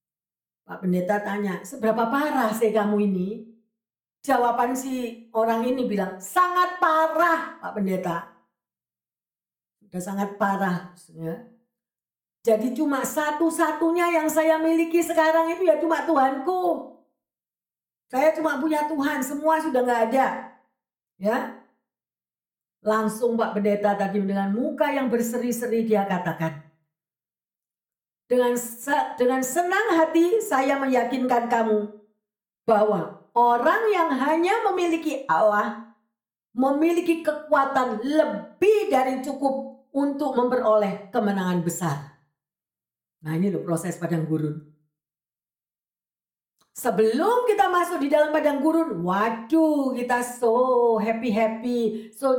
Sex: female